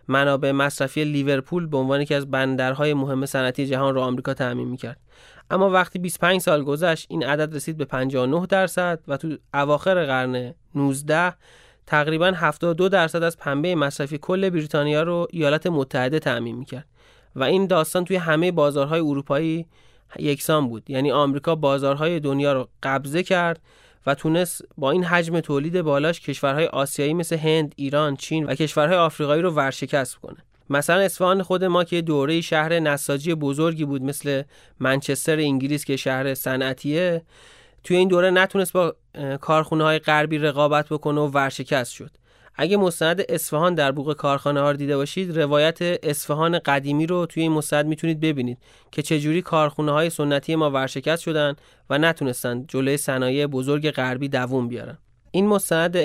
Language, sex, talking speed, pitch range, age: Persian, male, 155 wpm, 140-165 Hz, 30-49